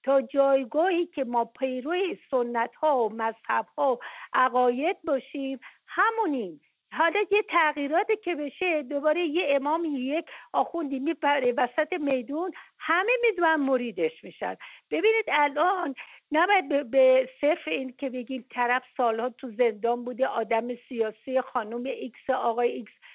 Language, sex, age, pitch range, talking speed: English, female, 50-69, 245-320 Hz, 120 wpm